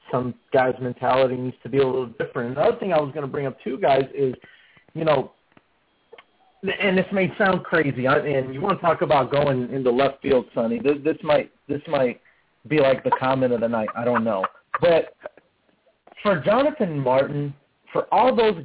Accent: American